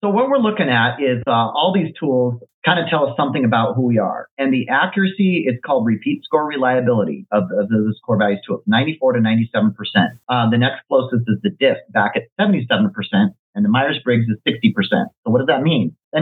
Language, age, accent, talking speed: English, 40-59, American, 210 wpm